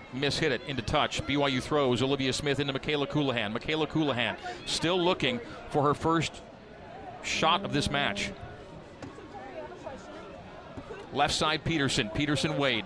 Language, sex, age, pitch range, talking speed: English, male, 40-59, 130-160 Hz, 130 wpm